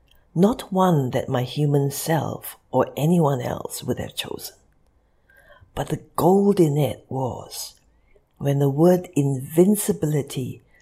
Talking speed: 120 wpm